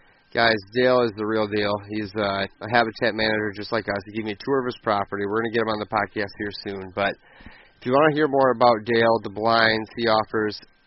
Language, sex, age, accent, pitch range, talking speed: English, male, 20-39, American, 105-115 Hz, 250 wpm